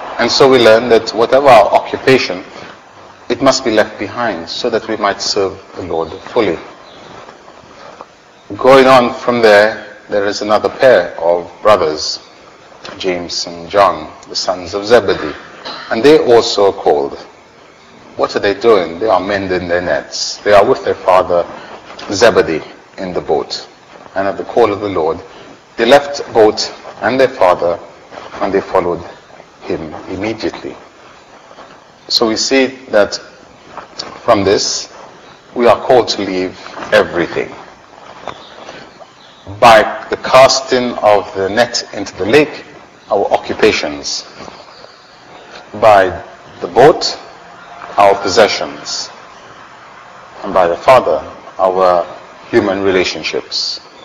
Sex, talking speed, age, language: male, 125 wpm, 30-49, English